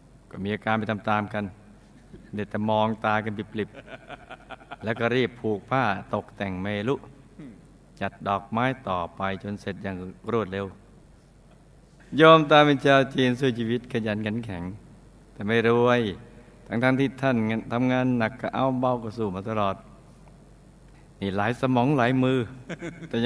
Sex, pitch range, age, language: male, 105-125 Hz, 60-79, Thai